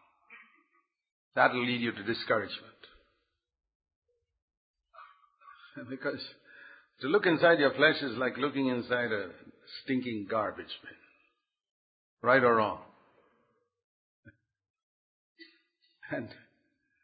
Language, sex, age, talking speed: English, male, 60-79, 85 wpm